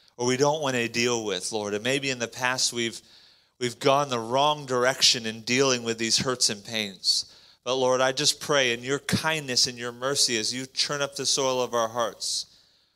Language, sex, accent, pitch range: English, male, American, 110-135 Hz